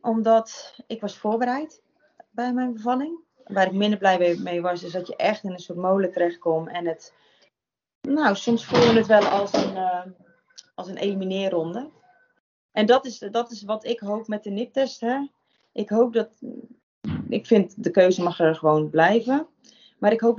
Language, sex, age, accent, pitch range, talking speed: Dutch, female, 30-49, Dutch, 185-240 Hz, 180 wpm